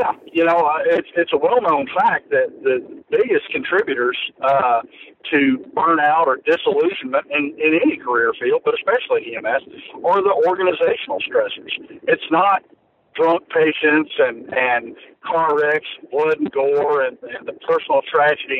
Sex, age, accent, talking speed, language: male, 50-69, American, 150 wpm, English